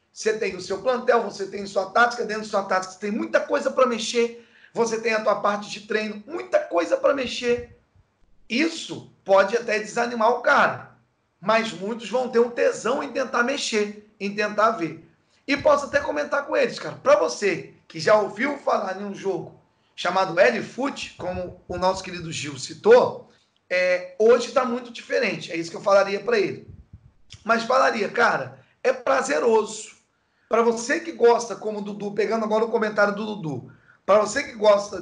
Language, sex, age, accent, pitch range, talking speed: Portuguese, male, 40-59, Brazilian, 200-240 Hz, 180 wpm